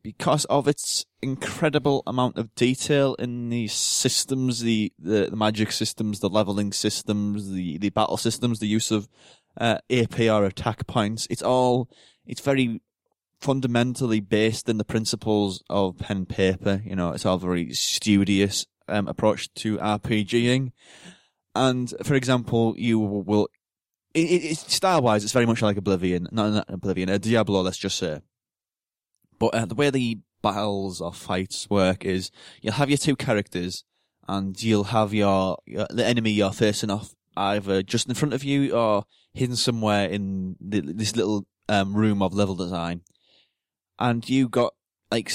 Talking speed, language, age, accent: 160 wpm, English, 20-39, British